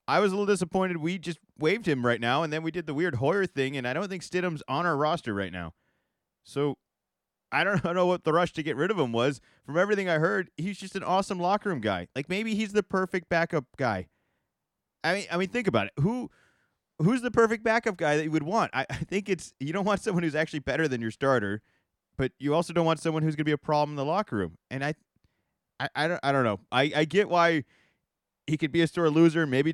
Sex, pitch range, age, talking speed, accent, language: male, 130-170 Hz, 30-49, 250 wpm, American, English